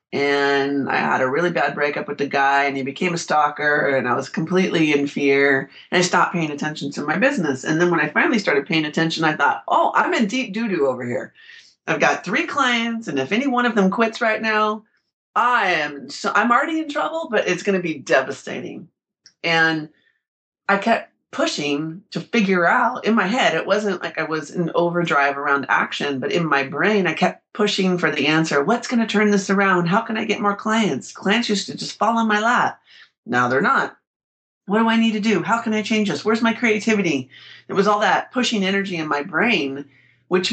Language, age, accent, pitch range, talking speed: English, 30-49, American, 155-220 Hz, 220 wpm